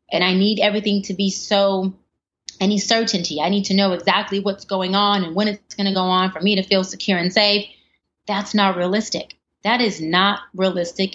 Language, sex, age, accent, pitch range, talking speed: English, female, 30-49, American, 180-215 Hz, 205 wpm